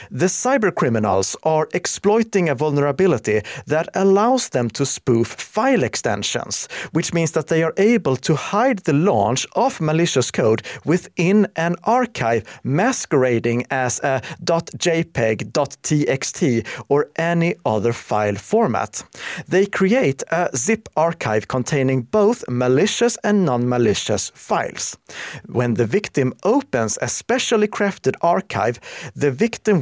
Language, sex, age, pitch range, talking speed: Swedish, male, 40-59, 125-200 Hz, 120 wpm